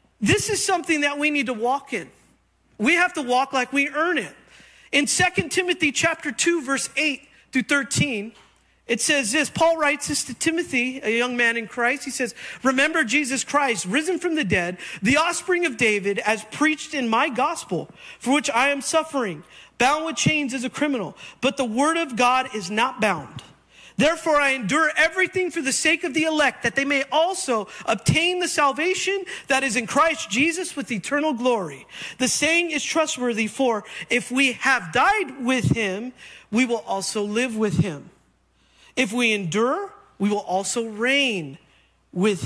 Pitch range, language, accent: 220-305 Hz, English, American